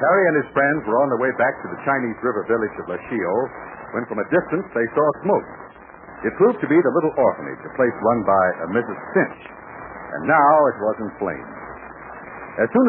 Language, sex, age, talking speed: English, male, 60-79, 210 wpm